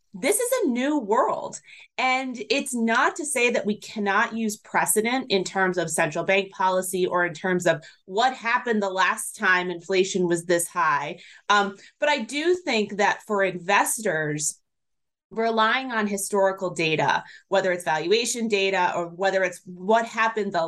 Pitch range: 180-230 Hz